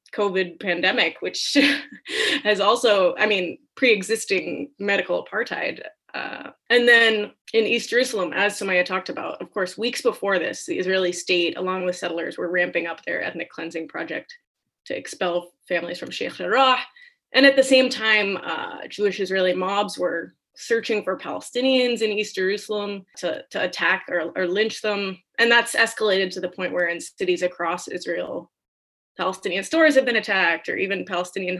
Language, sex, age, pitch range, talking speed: English, female, 20-39, 185-235 Hz, 160 wpm